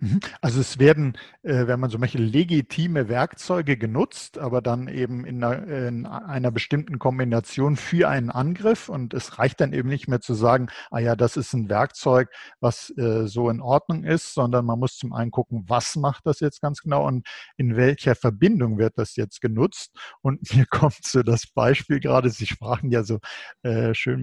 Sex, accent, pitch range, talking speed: male, German, 115-135 Hz, 180 wpm